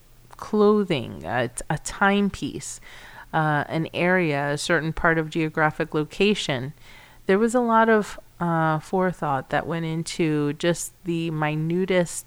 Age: 30-49